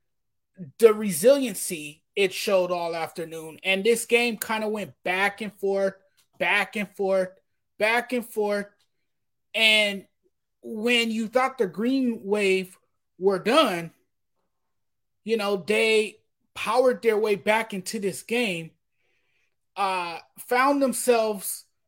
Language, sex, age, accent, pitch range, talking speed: English, male, 30-49, American, 195-260 Hz, 120 wpm